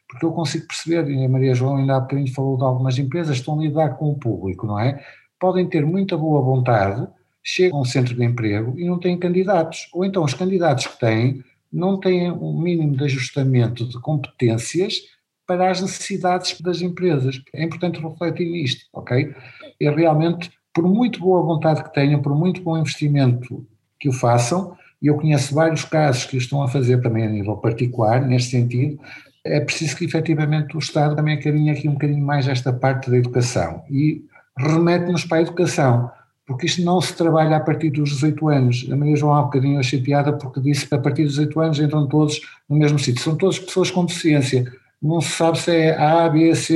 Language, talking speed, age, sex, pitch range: Portuguese, 200 wpm, 60-79, male, 130-165 Hz